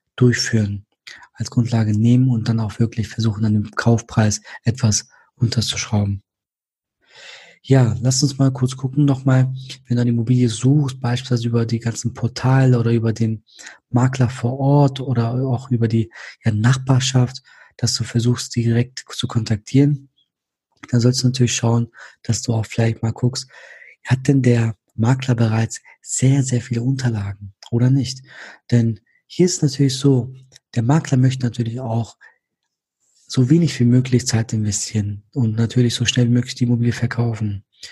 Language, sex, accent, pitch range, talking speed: German, male, German, 115-130 Hz, 150 wpm